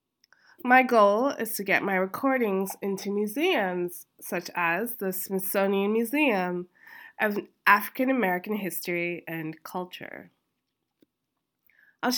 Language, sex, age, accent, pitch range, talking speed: English, female, 20-39, American, 180-235 Hz, 105 wpm